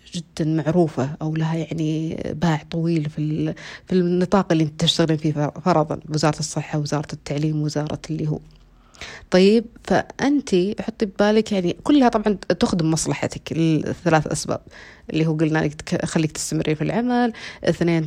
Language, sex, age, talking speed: Arabic, female, 30-49, 135 wpm